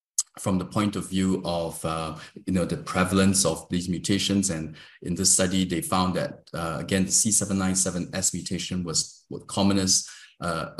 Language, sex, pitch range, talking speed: English, male, 85-100 Hz, 160 wpm